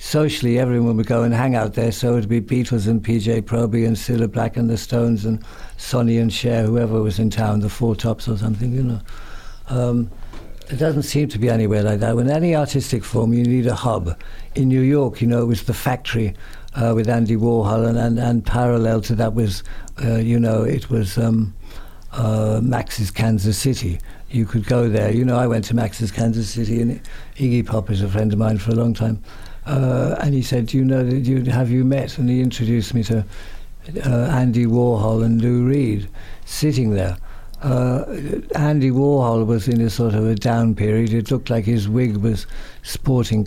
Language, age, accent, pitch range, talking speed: English, 60-79, British, 110-125 Hz, 210 wpm